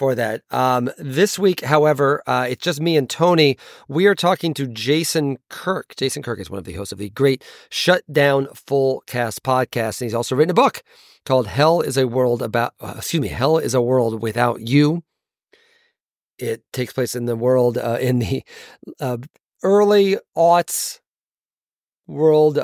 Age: 40-59